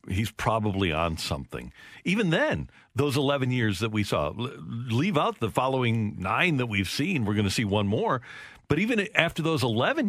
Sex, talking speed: male, 185 wpm